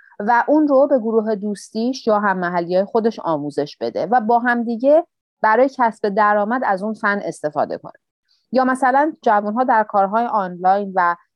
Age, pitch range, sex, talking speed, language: 30-49, 175-240 Hz, female, 170 wpm, Persian